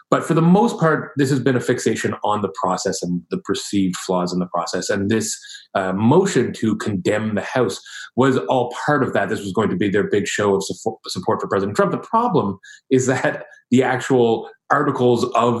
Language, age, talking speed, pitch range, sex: English, 30-49, 210 wpm, 95-130 Hz, male